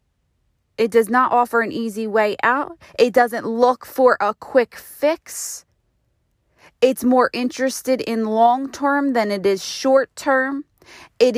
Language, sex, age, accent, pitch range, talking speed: English, female, 30-49, American, 205-270 Hz, 140 wpm